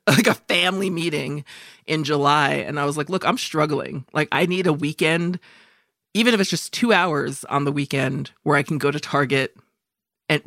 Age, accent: 30-49, American